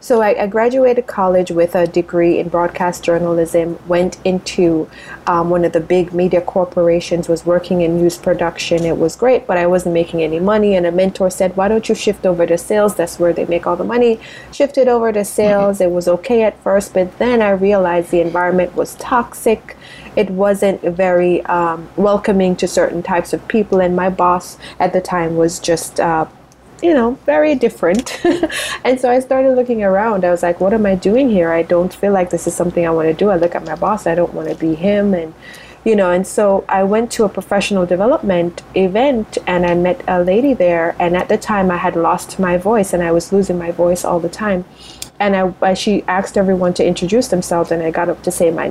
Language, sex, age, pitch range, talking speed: English, female, 30-49, 175-205 Hz, 220 wpm